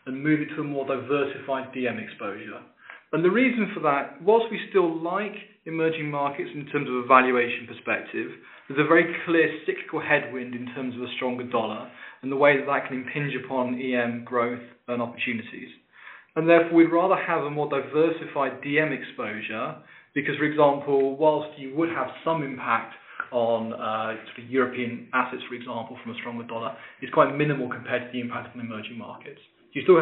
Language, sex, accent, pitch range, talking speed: English, male, British, 125-155 Hz, 180 wpm